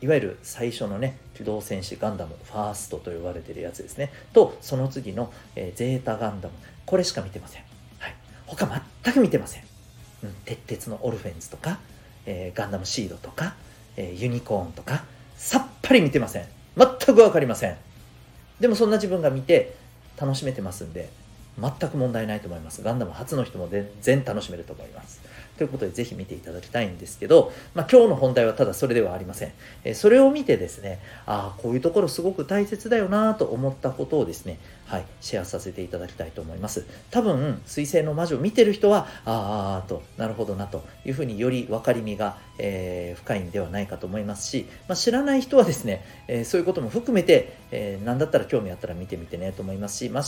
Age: 40-59